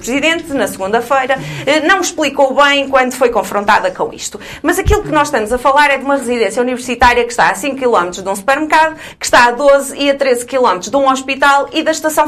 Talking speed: 220 wpm